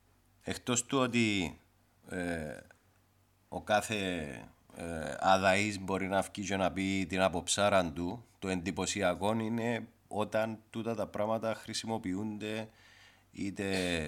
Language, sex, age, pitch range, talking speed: Greek, male, 30-49, 85-100 Hz, 105 wpm